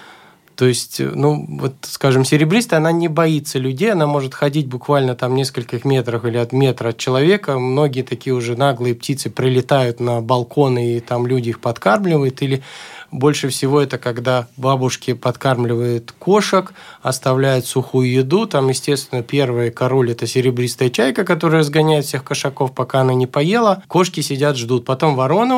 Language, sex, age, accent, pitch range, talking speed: Russian, male, 20-39, native, 125-155 Hz, 155 wpm